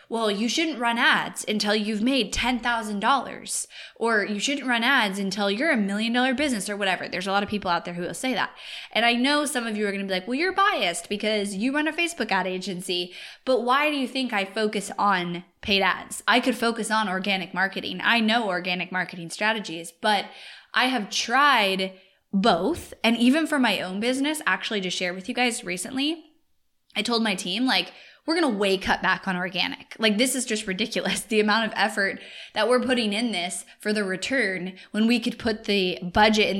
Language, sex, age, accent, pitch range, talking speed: English, female, 10-29, American, 190-245 Hz, 210 wpm